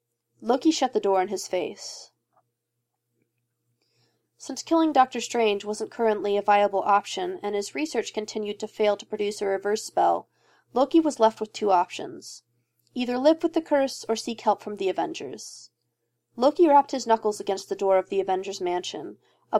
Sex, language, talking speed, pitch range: female, English, 170 wpm, 195-235 Hz